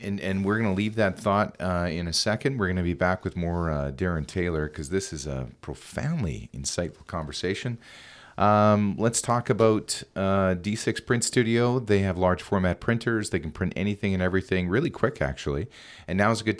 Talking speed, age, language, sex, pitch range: 205 wpm, 40-59, English, male, 80-105 Hz